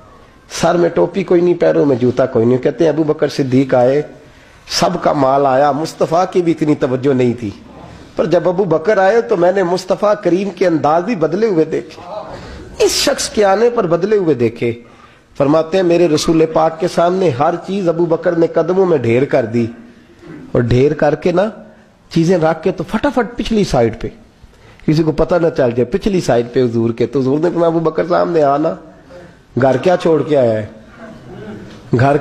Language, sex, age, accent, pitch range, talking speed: English, male, 40-59, Indian, 130-180 Hz, 140 wpm